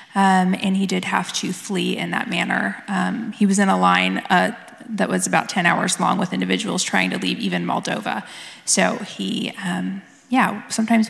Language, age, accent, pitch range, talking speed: English, 20-39, American, 180-210 Hz, 190 wpm